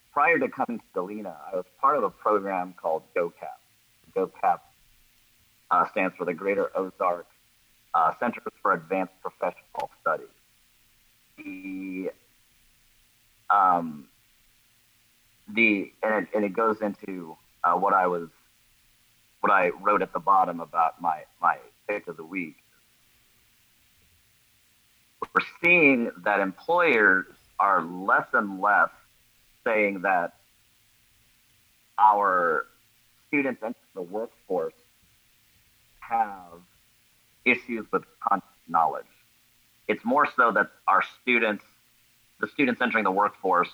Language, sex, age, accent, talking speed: English, male, 40-59, American, 110 wpm